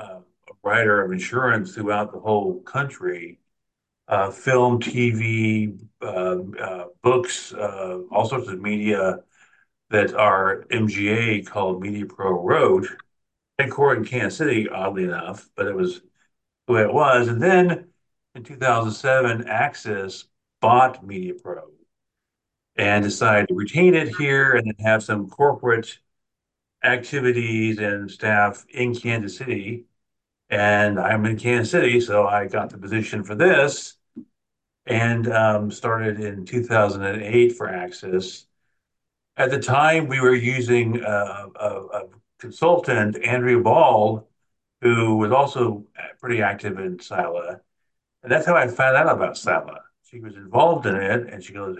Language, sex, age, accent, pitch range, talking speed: English, male, 50-69, American, 105-125 Hz, 135 wpm